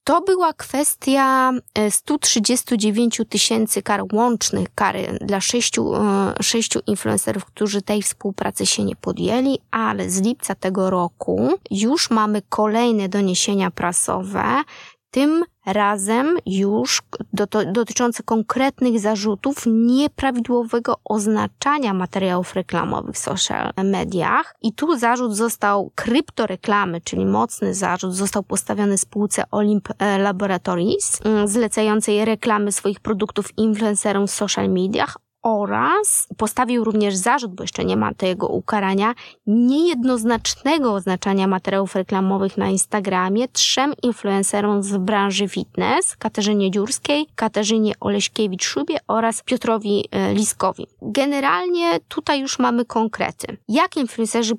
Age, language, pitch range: 20-39, Polish, 200-240 Hz